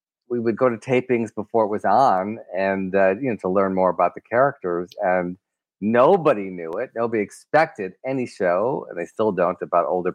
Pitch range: 95-130 Hz